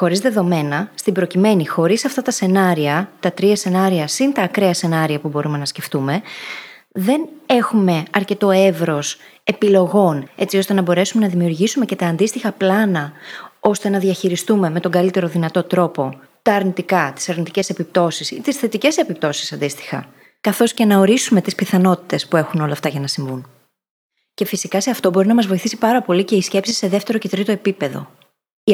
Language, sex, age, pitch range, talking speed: Greek, female, 20-39, 170-215 Hz, 175 wpm